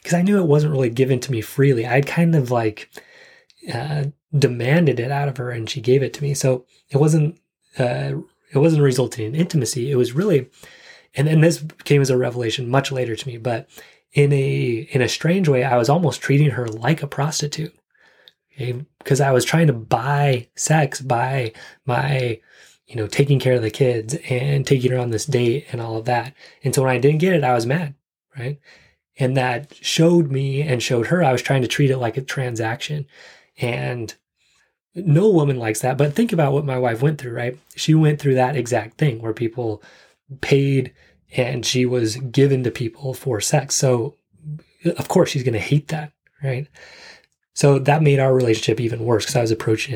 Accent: American